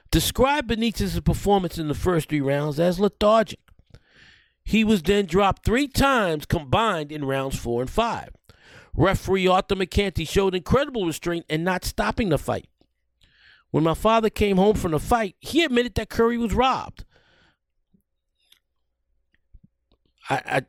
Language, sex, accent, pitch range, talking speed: English, male, American, 115-185 Hz, 140 wpm